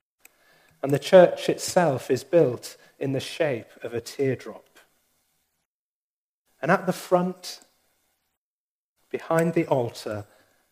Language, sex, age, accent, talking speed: English, male, 40-59, British, 105 wpm